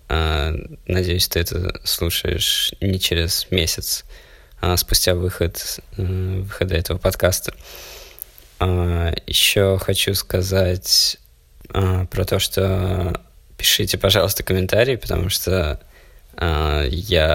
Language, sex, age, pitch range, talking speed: Russian, male, 20-39, 85-95 Hz, 85 wpm